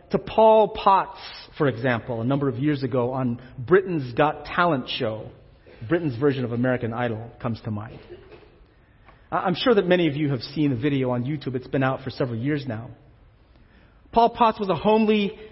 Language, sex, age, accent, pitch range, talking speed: English, male, 40-59, American, 120-170 Hz, 180 wpm